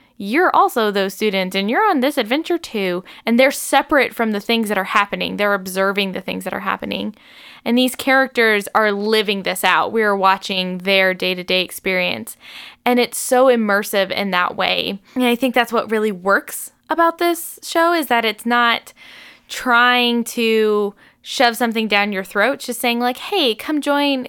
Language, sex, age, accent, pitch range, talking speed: English, female, 10-29, American, 200-260 Hz, 180 wpm